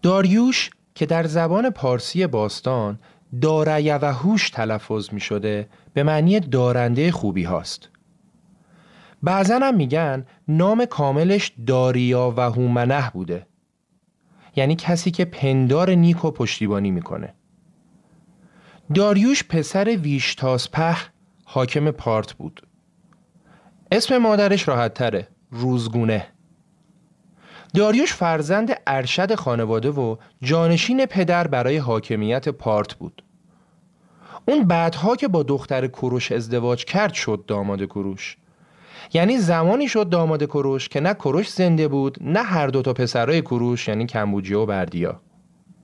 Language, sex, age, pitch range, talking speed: Persian, male, 30-49, 125-185 Hz, 110 wpm